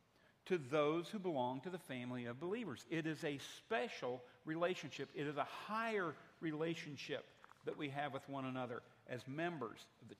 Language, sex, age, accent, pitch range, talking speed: English, male, 50-69, American, 130-185 Hz, 170 wpm